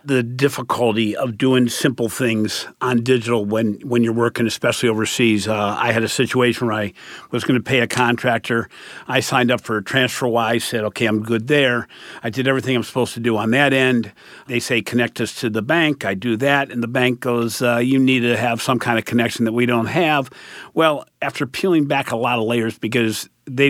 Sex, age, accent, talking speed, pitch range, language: male, 50-69, American, 215 wpm, 115-135 Hz, English